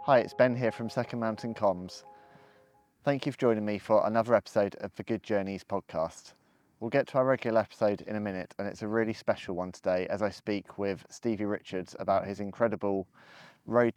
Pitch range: 95-110 Hz